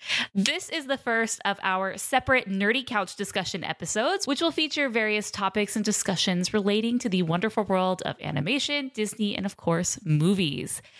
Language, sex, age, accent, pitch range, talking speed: English, female, 10-29, American, 180-245 Hz, 165 wpm